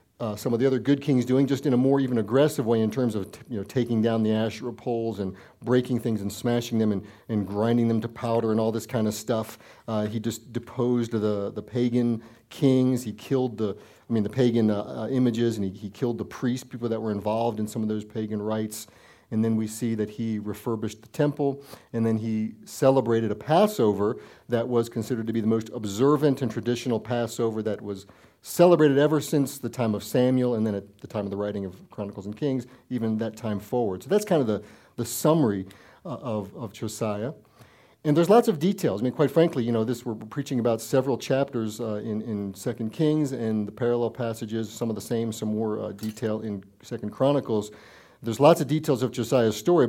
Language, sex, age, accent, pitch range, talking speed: English, male, 50-69, American, 110-130 Hz, 220 wpm